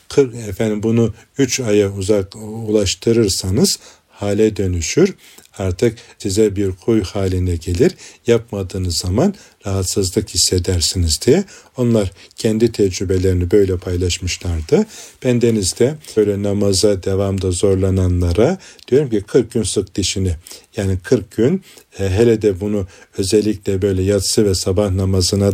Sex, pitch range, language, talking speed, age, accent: male, 90-105 Hz, Turkish, 115 wpm, 40-59, native